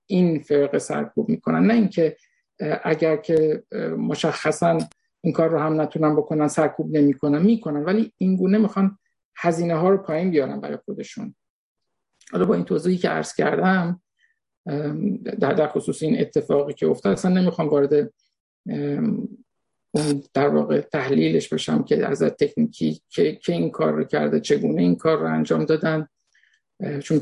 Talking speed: 145 wpm